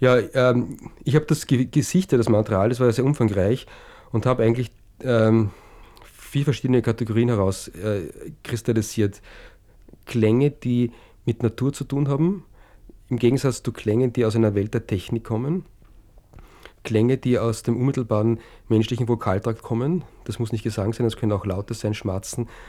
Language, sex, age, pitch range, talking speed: English, male, 40-59, 105-125 Hz, 155 wpm